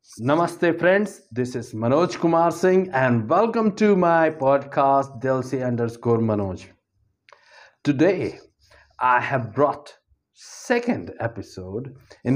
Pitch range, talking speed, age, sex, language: 115-145 Hz, 105 wpm, 60-79, male, Hindi